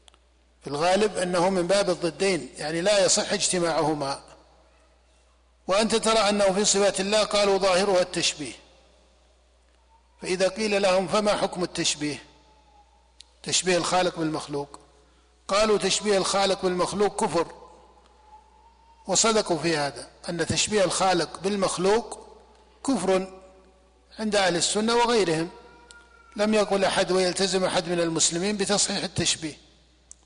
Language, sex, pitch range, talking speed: Arabic, male, 155-200 Hz, 105 wpm